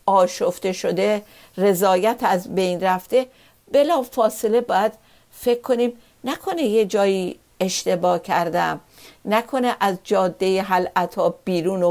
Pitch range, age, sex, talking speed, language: 185-235 Hz, 50-69, female, 105 wpm, Persian